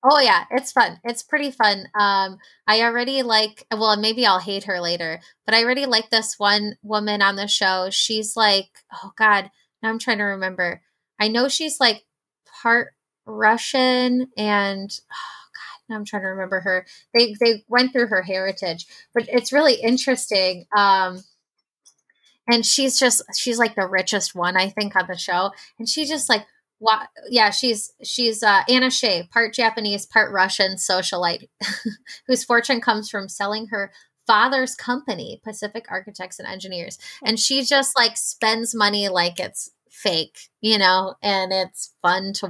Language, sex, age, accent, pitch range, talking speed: English, female, 20-39, American, 195-245 Hz, 165 wpm